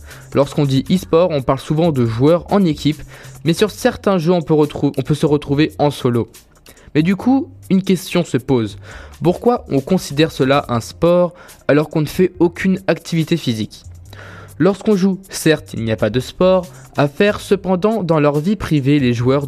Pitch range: 130-170 Hz